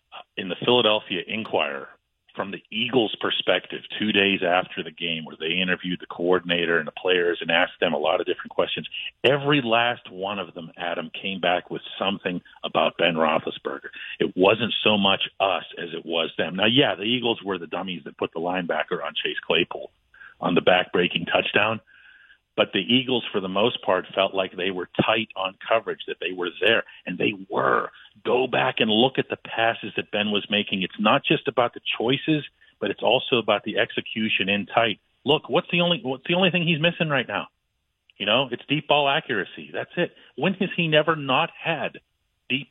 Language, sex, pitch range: English, male, 100-160 Hz